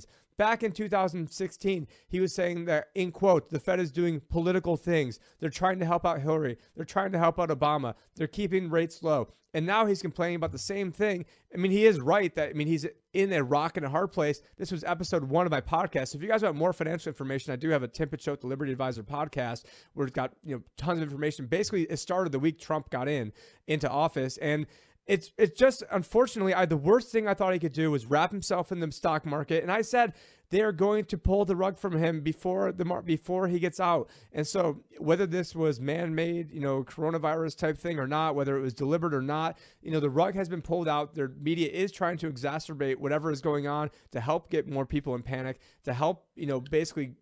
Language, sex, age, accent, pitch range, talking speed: English, male, 30-49, American, 150-180 Hz, 235 wpm